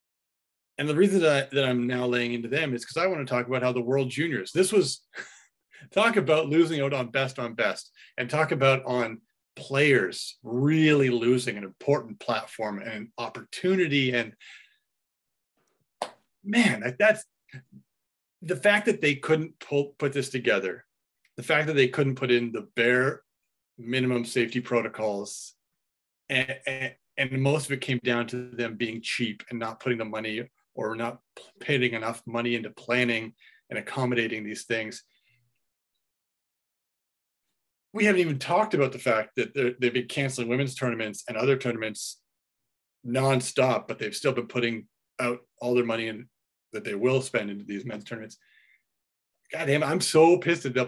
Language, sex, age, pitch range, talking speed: English, male, 30-49, 120-150 Hz, 160 wpm